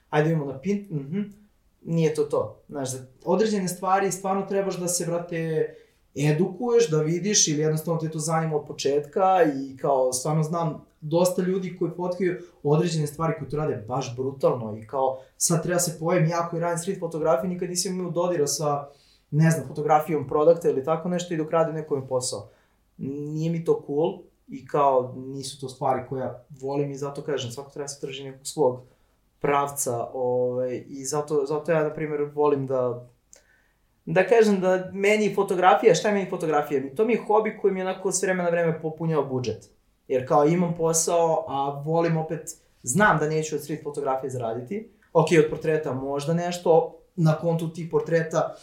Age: 20-39